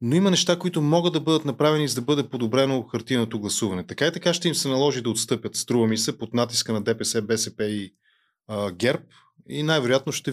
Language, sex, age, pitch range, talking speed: Bulgarian, male, 20-39, 115-155 Hz, 215 wpm